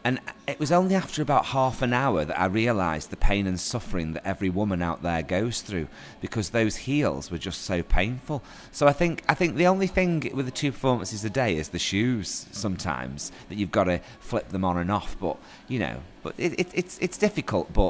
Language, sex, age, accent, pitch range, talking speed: English, male, 30-49, British, 90-110 Hz, 225 wpm